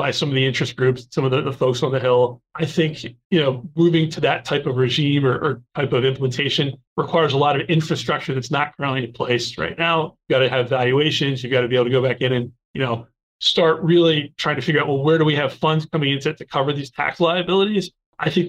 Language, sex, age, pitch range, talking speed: English, male, 30-49, 130-165 Hz, 260 wpm